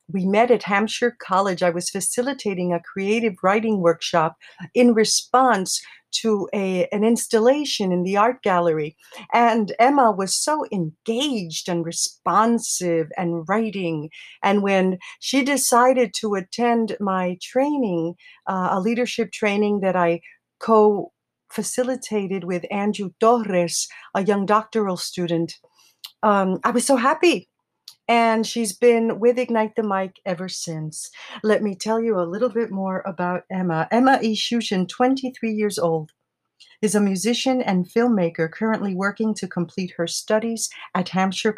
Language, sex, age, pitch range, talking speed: English, female, 50-69, 180-230 Hz, 140 wpm